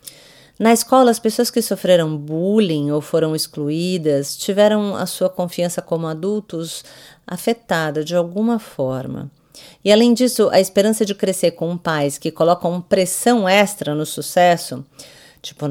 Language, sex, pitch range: English, female, 155-205 Hz